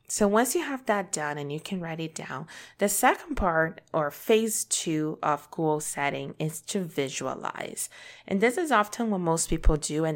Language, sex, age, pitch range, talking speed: English, female, 20-39, 155-205 Hz, 195 wpm